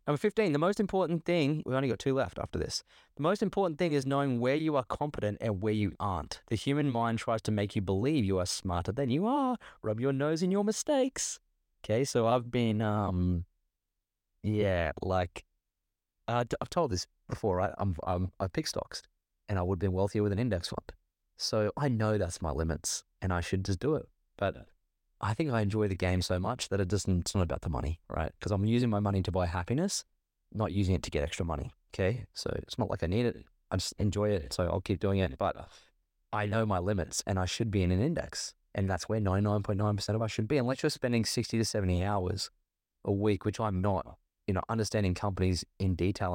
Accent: Australian